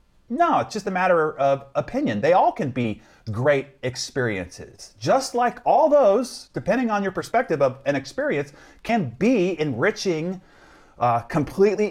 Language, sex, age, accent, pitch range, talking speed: English, male, 40-59, American, 120-185 Hz, 145 wpm